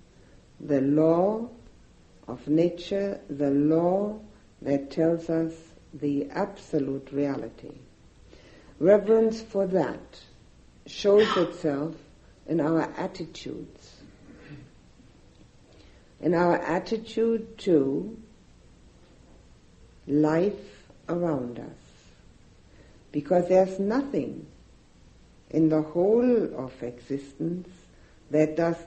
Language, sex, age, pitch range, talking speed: English, female, 60-79, 145-185 Hz, 75 wpm